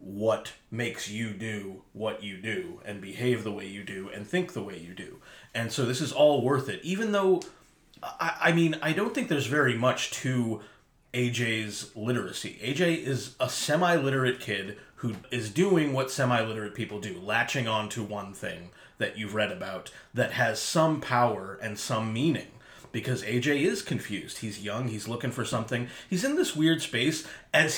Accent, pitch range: American, 110-150 Hz